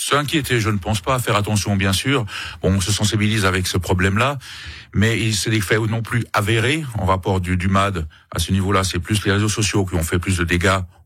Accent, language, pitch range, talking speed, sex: French, French, 95-115 Hz, 240 wpm, male